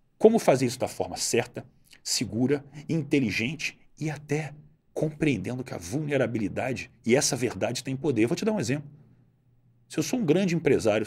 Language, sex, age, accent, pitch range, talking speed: Portuguese, male, 40-59, Brazilian, 110-150 Hz, 170 wpm